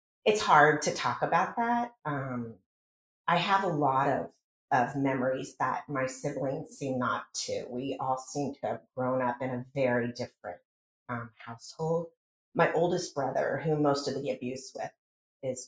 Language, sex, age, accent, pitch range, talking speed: English, female, 30-49, American, 125-160 Hz, 165 wpm